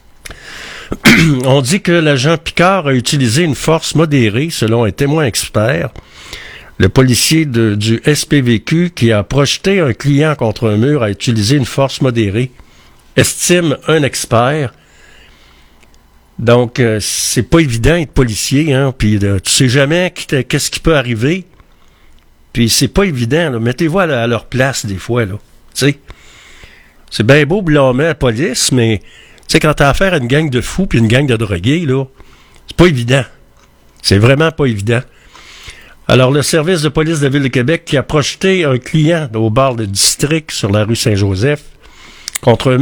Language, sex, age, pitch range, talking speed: French, male, 60-79, 115-155 Hz, 170 wpm